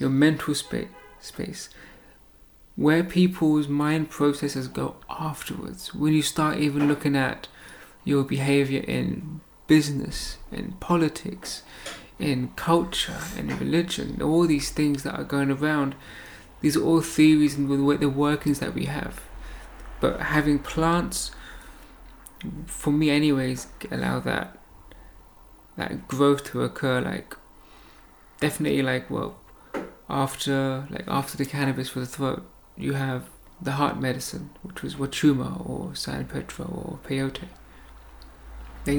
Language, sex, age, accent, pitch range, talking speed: English, male, 30-49, British, 135-155 Hz, 125 wpm